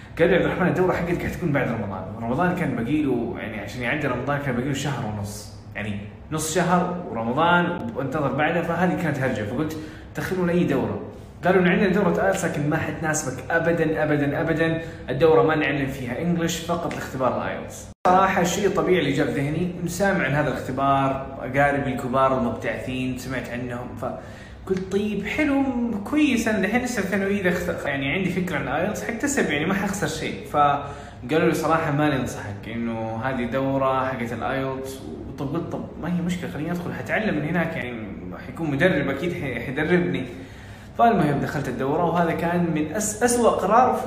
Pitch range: 125-175 Hz